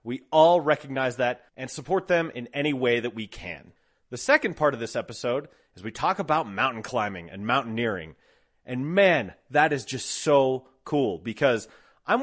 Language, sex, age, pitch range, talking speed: English, male, 30-49, 125-165 Hz, 175 wpm